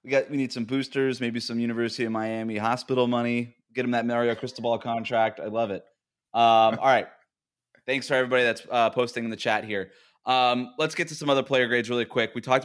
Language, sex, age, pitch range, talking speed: English, male, 20-39, 115-145 Hz, 225 wpm